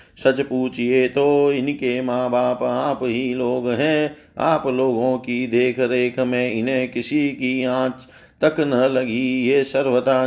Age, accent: 50-69, native